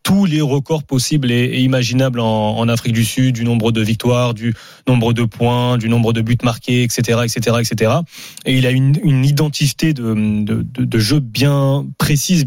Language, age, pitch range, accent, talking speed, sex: French, 20-39, 120-155 Hz, French, 190 wpm, male